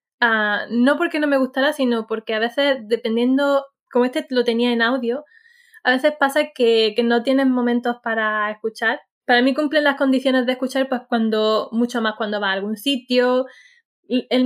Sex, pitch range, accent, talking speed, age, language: female, 220-260 Hz, Spanish, 185 wpm, 20-39, Spanish